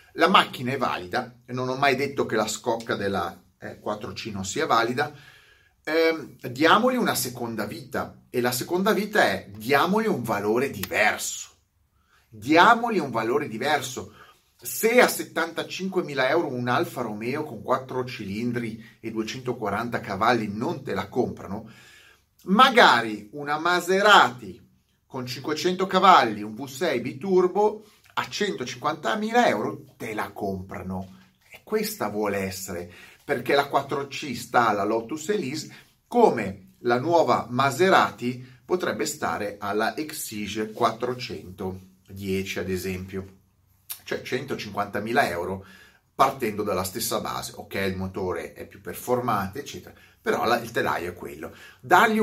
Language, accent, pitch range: Italian, native, 105-170 Hz